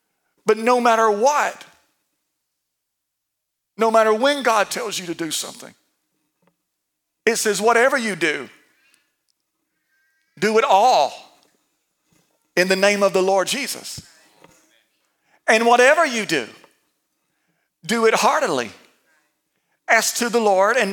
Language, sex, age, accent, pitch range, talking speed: English, male, 40-59, American, 225-285 Hz, 115 wpm